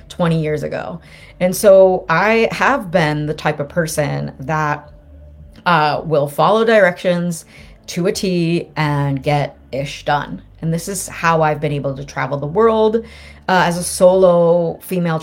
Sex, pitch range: female, 145-185 Hz